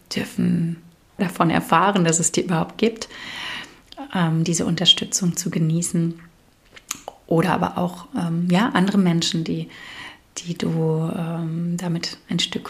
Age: 30-49